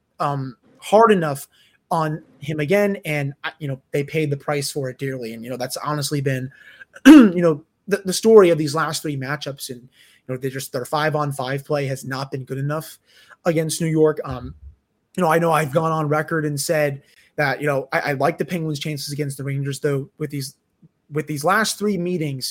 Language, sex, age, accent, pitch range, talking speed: English, male, 20-39, American, 135-170 Hz, 215 wpm